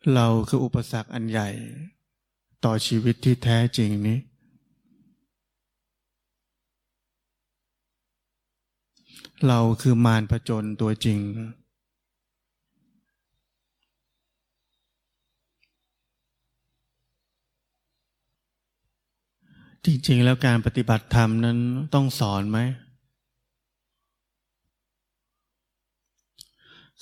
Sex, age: male, 20-39